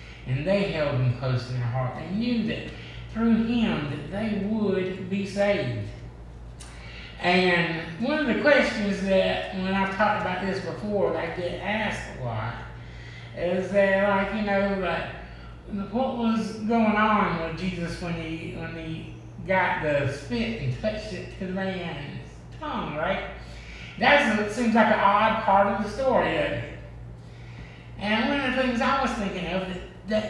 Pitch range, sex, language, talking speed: 130-205 Hz, male, English, 170 wpm